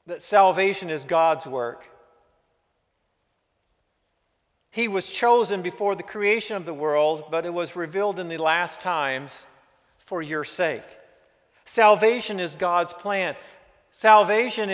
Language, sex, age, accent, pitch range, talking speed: English, male, 50-69, American, 175-220 Hz, 120 wpm